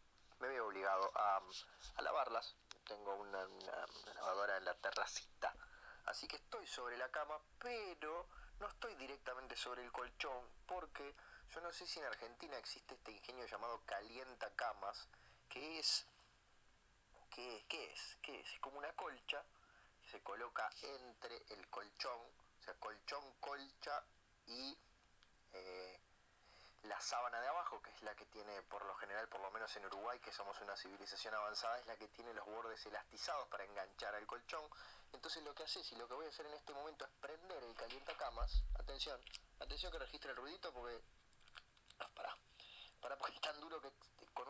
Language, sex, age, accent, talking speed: Spanish, male, 30-49, Argentinian, 180 wpm